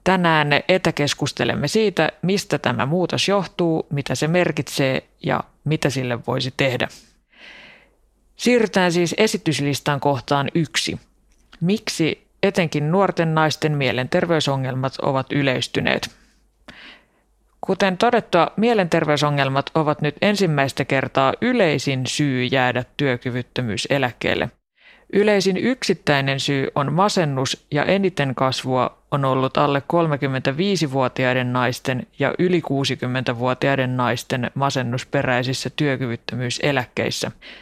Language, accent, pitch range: Finnish, native, 135-175 Hz